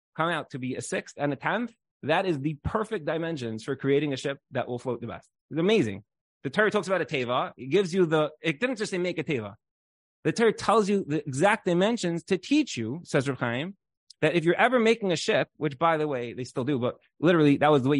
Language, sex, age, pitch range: English, male, 20-39, 120-165 Hz